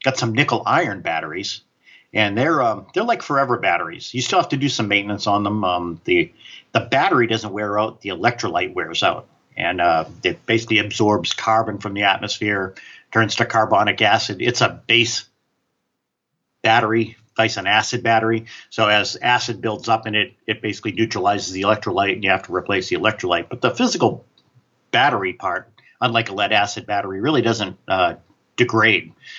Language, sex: English, male